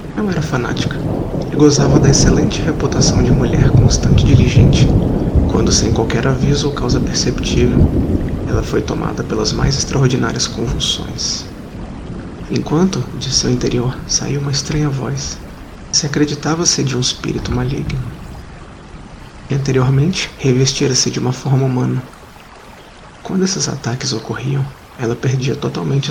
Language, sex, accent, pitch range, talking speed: Portuguese, male, Brazilian, 115-140 Hz, 130 wpm